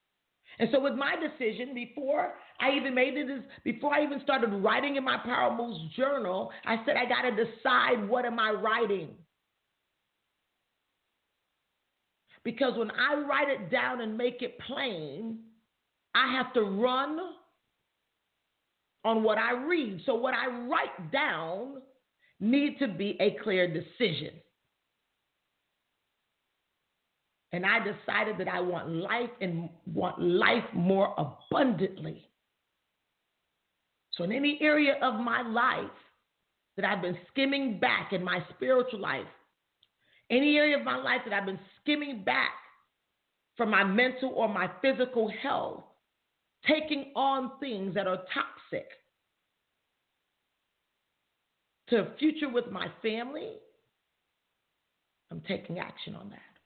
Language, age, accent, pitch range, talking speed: English, 40-59, American, 200-275 Hz, 125 wpm